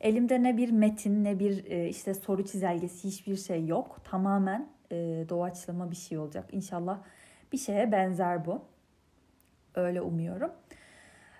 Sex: female